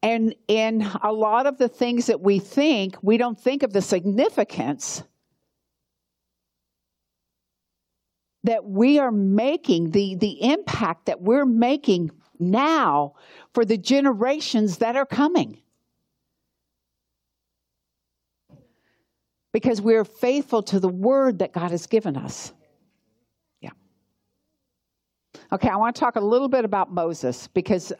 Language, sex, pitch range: English, female, 150-220 Hz